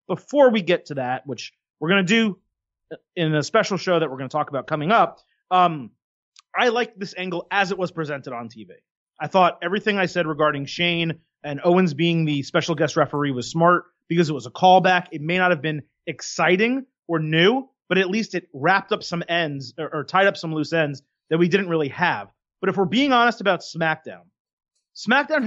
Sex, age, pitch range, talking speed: male, 30-49, 155-185 Hz, 210 wpm